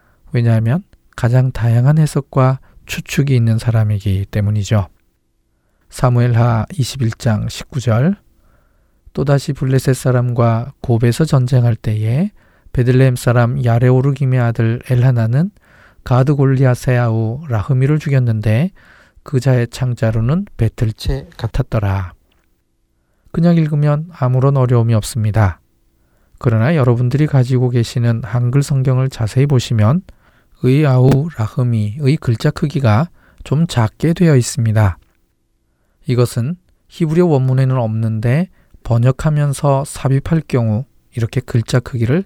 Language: Korean